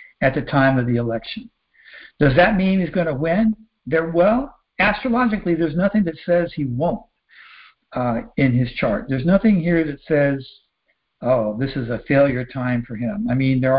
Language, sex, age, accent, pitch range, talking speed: English, male, 60-79, American, 125-185 Hz, 180 wpm